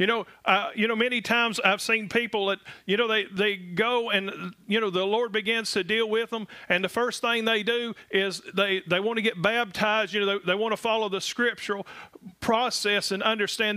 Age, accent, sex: 40-59, American, male